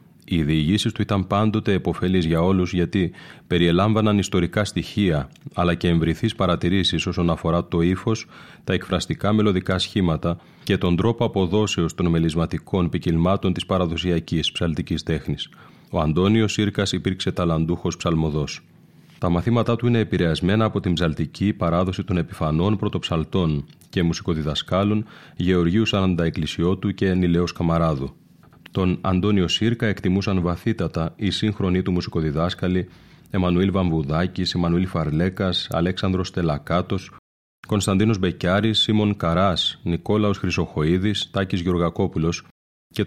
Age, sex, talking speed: 30-49, male, 120 wpm